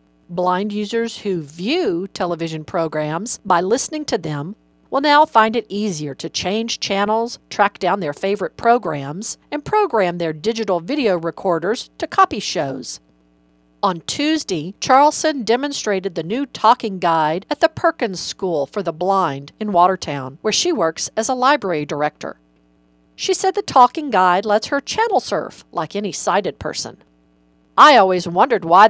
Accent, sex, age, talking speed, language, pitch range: American, female, 50-69, 150 wpm, English, 160-230 Hz